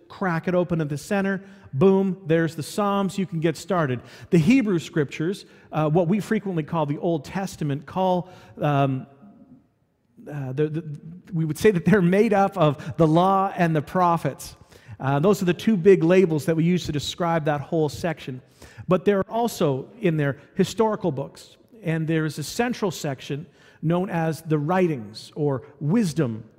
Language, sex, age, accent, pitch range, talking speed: English, male, 40-59, American, 150-190 Hz, 170 wpm